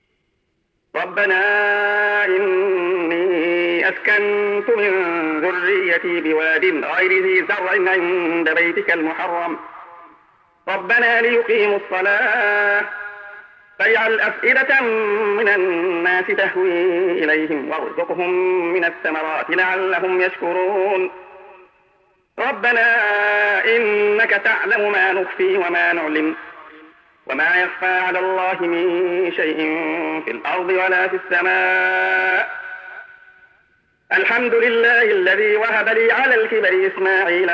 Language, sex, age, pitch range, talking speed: Arabic, male, 40-59, 175-210 Hz, 85 wpm